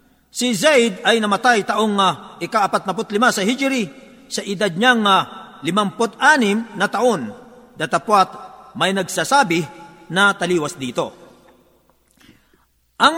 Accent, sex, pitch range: native, male, 185-245 Hz